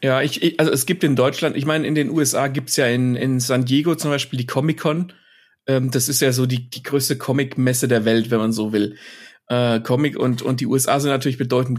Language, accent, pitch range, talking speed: German, German, 125-155 Hz, 245 wpm